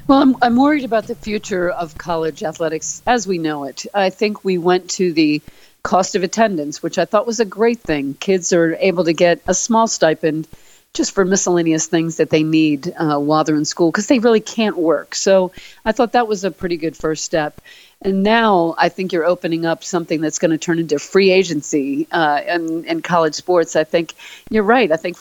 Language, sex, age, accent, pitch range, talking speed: English, female, 50-69, American, 155-190 Hz, 215 wpm